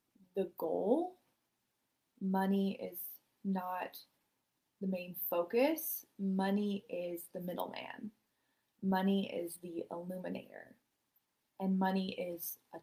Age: 20-39